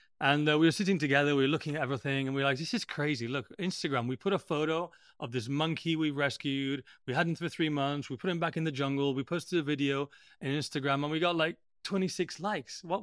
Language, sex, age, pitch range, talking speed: English, male, 30-49, 130-170 Hz, 260 wpm